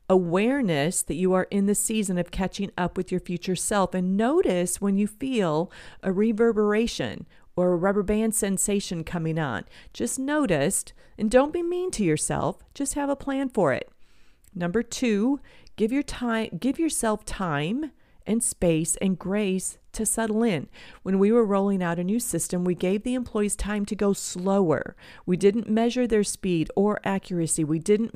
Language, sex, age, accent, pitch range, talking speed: English, female, 40-59, American, 175-235 Hz, 175 wpm